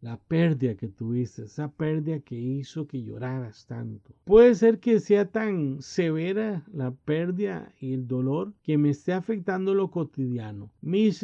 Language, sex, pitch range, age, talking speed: Spanish, male, 145-195 Hz, 50-69, 155 wpm